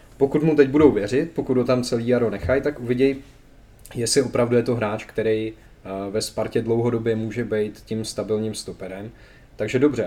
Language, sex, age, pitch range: Czech, male, 20-39, 105-120 Hz